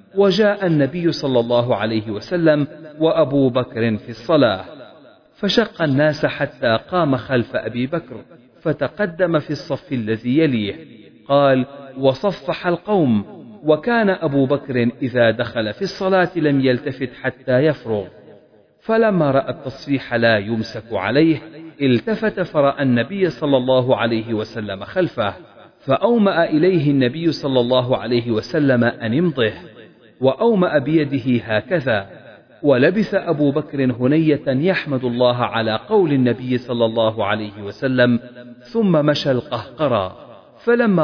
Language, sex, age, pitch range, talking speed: Arabic, male, 40-59, 115-160 Hz, 115 wpm